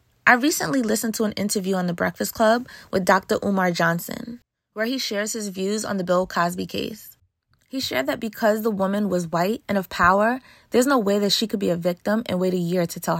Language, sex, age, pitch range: English, female, 20-39, 185-230 Hz